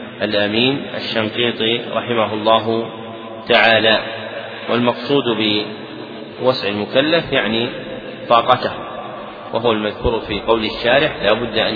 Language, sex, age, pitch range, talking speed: Arabic, male, 40-59, 115-125 Hz, 90 wpm